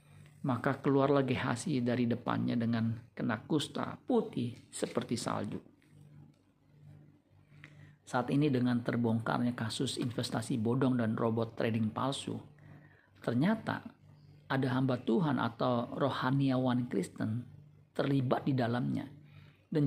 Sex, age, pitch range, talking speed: male, 50-69, 115-140 Hz, 105 wpm